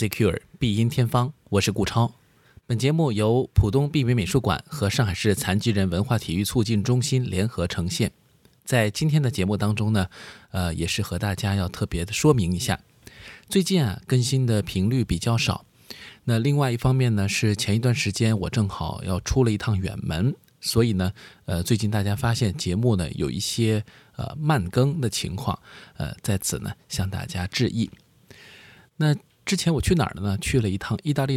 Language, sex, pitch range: Chinese, male, 105-135 Hz